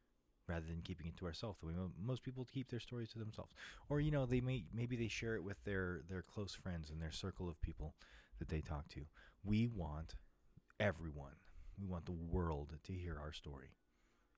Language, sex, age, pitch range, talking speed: English, male, 30-49, 75-100 Hz, 205 wpm